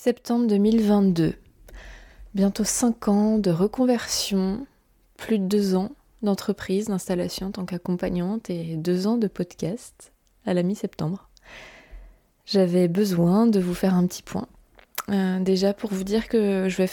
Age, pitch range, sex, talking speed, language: 20-39, 185-220 Hz, female, 140 wpm, French